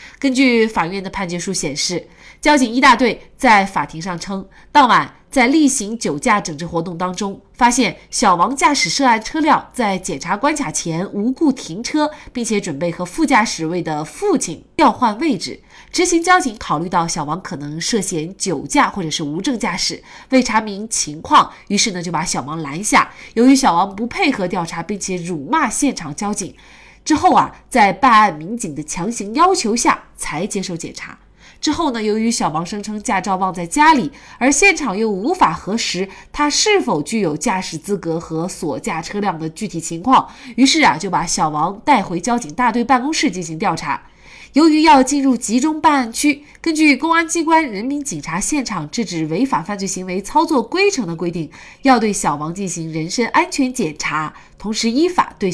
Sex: female